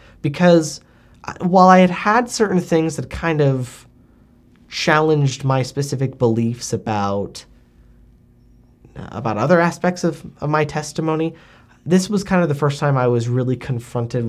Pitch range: 120-165 Hz